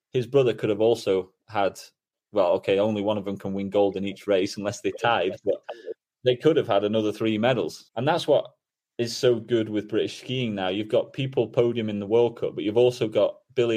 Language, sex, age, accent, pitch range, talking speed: English, male, 30-49, British, 100-115 Hz, 225 wpm